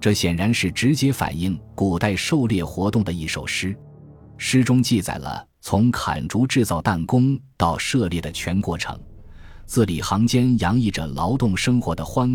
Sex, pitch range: male, 85-115 Hz